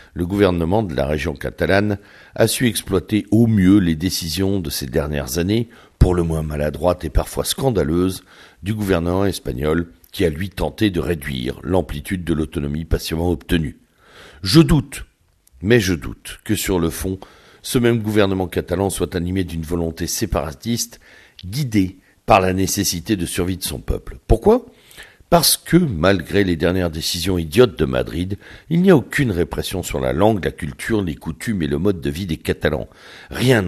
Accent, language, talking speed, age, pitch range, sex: French, French, 170 wpm, 60-79, 80-105 Hz, male